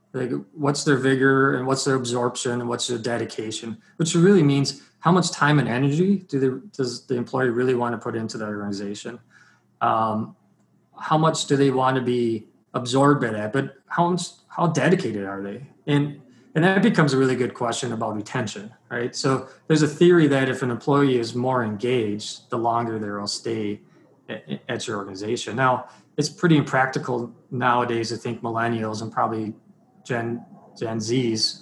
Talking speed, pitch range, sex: 175 wpm, 115-145 Hz, male